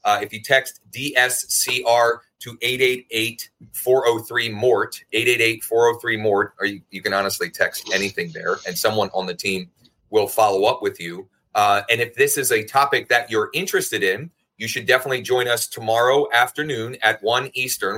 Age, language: 30-49, English